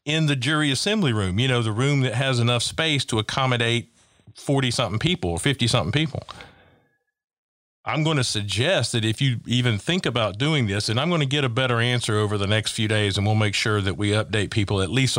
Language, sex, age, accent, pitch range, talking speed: English, male, 50-69, American, 110-135 Hz, 215 wpm